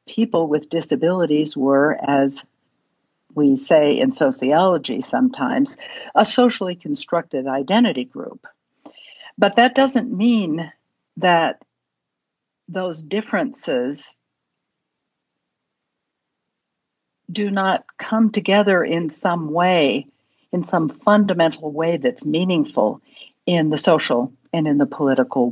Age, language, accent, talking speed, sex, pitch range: 60-79, English, American, 100 wpm, female, 145-210 Hz